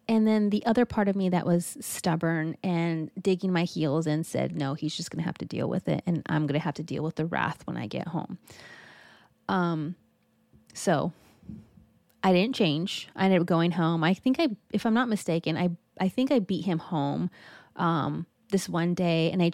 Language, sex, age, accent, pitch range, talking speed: English, female, 20-39, American, 155-190 Hz, 215 wpm